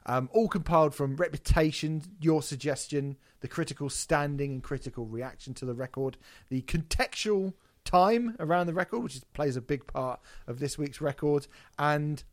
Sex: male